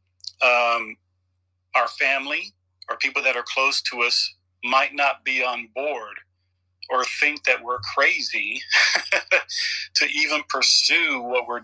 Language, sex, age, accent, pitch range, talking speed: English, male, 40-59, American, 90-130 Hz, 130 wpm